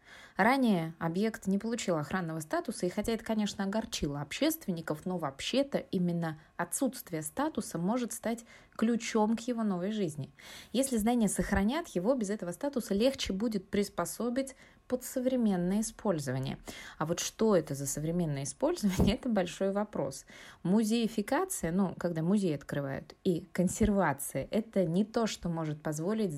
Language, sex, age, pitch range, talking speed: Russian, female, 20-39, 170-220 Hz, 140 wpm